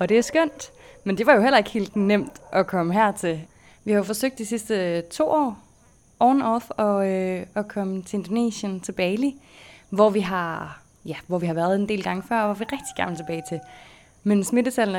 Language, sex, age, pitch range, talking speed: Danish, female, 20-39, 175-230 Hz, 225 wpm